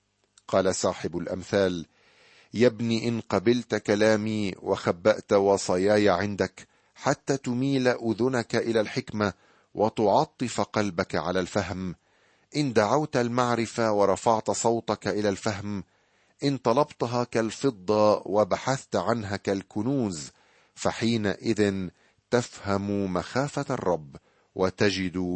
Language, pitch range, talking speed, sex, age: Arabic, 95-120 Hz, 90 wpm, male, 50-69